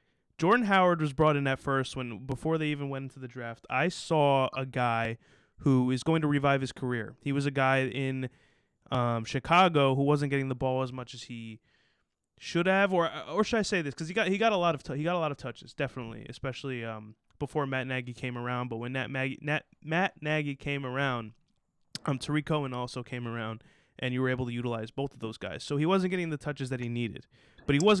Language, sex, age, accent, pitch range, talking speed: English, male, 20-39, American, 125-155 Hz, 235 wpm